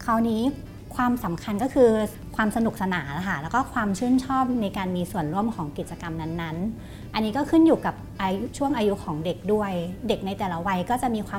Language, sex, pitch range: Thai, female, 170-235 Hz